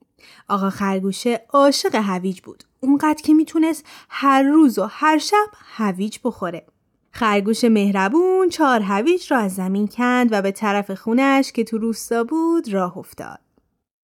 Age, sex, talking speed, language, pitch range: 30-49, female, 140 wpm, Persian, 210-290 Hz